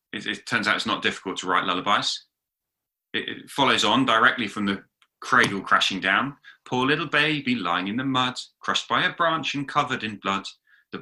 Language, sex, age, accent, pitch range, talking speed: English, male, 30-49, British, 120-150 Hz, 195 wpm